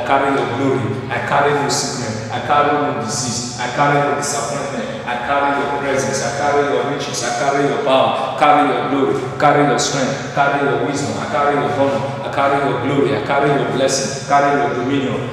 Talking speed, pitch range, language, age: 220 wpm, 135-140 Hz, English, 40-59